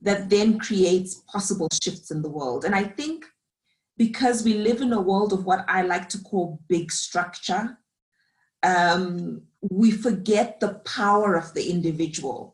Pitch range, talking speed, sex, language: 170-215 Hz, 160 wpm, female, English